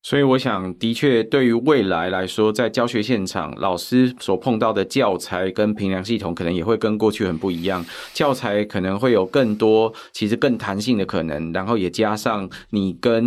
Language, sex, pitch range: Chinese, male, 95-115 Hz